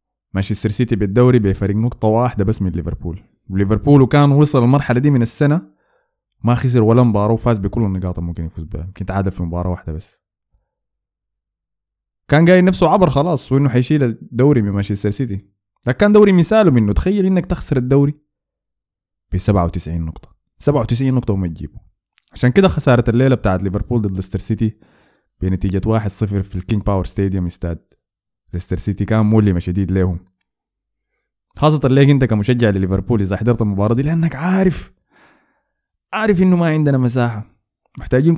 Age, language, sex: 20-39, Arabic, male